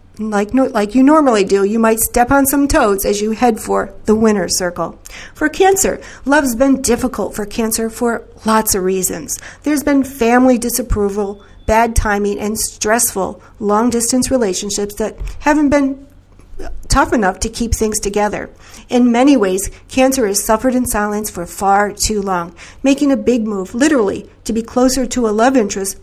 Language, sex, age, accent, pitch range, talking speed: English, female, 50-69, American, 205-250 Hz, 170 wpm